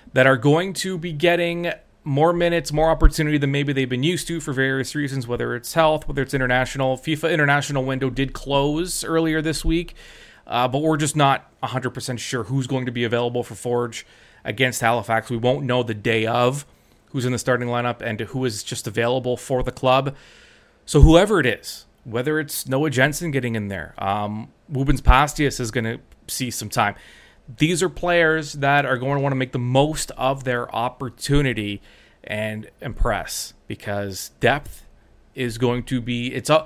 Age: 30-49